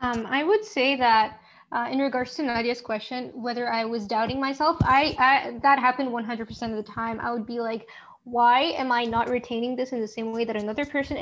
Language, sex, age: English, female, 20-39